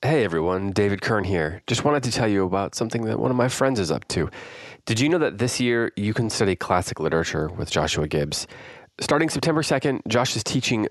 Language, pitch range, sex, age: English, 85-110 Hz, male, 30-49